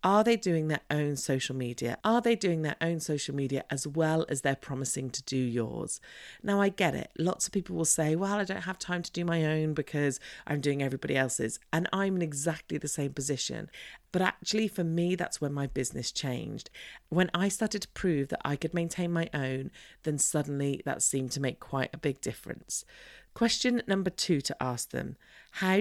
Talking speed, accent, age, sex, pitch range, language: 205 wpm, British, 40-59, female, 135-185 Hz, English